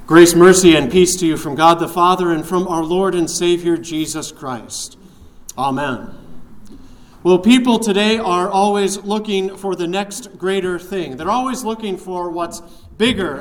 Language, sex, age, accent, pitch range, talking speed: English, male, 40-59, American, 165-210 Hz, 160 wpm